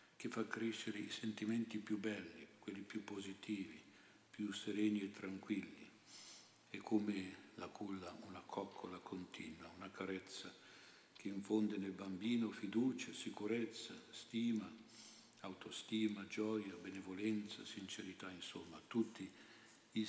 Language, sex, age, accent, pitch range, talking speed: Italian, male, 60-79, native, 95-110 Hz, 110 wpm